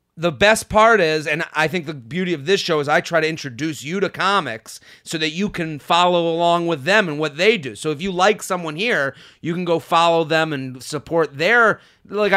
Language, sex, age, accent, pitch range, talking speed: English, male, 30-49, American, 150-200 Hz, 230 wpm